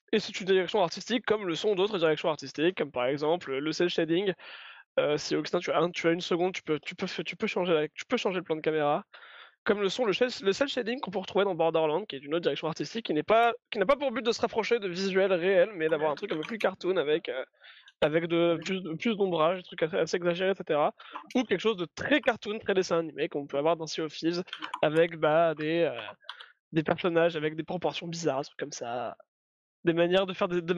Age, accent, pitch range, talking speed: 20-39, French, 165-220 Hz, 250 wpm